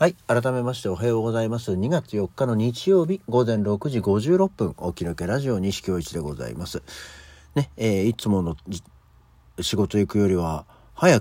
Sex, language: male, Japanese